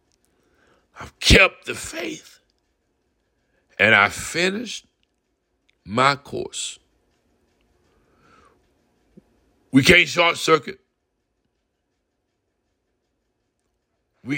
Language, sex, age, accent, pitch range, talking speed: English, male, 60-79, American, 110-175 Hz, 60 wpm